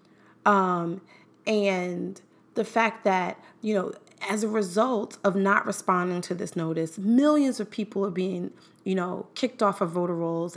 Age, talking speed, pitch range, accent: 30-49, 160 wpm, 160-205 Hz, American